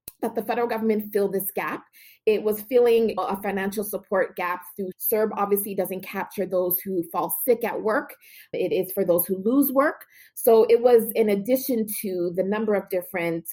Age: 30-49